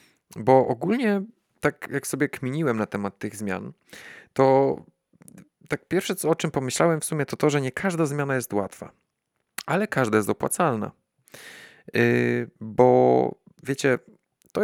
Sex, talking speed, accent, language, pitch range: male, 140 wpm, native, Polish, 105-140 Hz